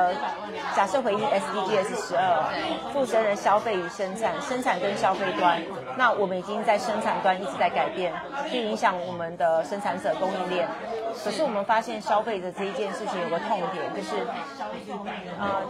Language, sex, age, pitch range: Chinese, female, 30-49, 180-225 Hz